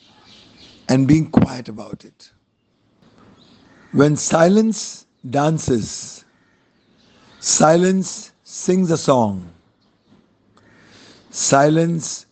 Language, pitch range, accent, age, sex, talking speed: English, 120-165 Hz, Indian, 50-69, male, 65 wpm